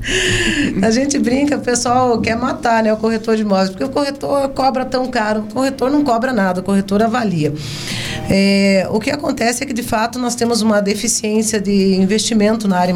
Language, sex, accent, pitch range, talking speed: Portuguese, female, Brazilian, 170-220 Hz, 190 wpm